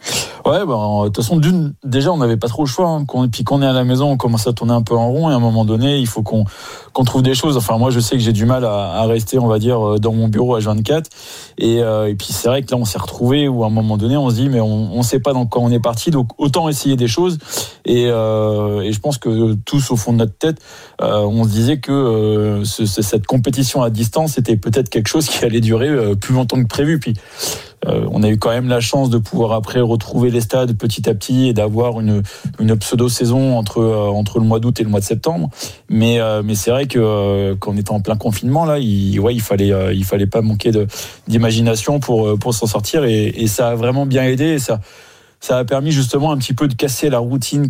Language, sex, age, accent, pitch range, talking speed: French, male, 20-39, French, 110-130 Hz, 255 wpm